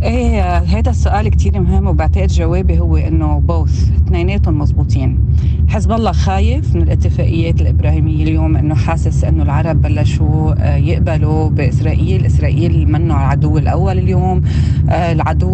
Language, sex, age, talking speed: Arabic, female, 30-49, 120 wpm